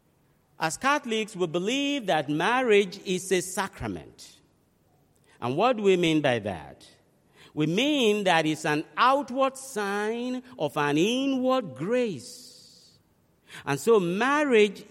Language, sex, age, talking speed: English, male, 50-69, 120 wpm